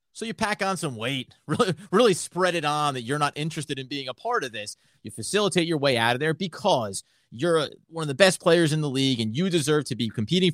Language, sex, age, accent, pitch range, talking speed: English, male, 30-49, American, 130-175 Hz, 250 wpm